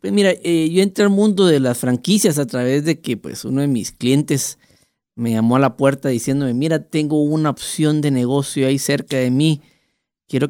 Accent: Mexican